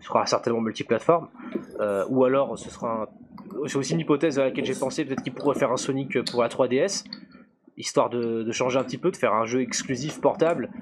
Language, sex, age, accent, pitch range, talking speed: French, male, 20-39, French, 125-150 Hz, 220 wpm